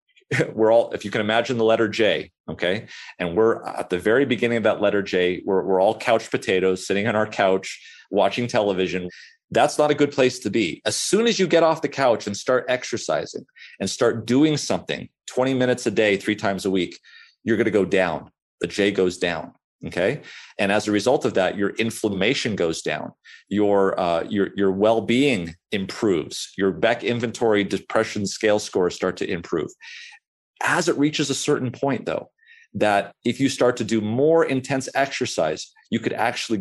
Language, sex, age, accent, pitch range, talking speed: English, male, 40-59, American, 100-130 Hz, 185 wpm